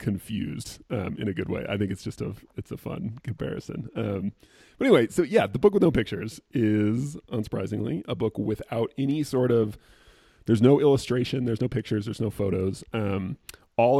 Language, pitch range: English, 100-125 Hz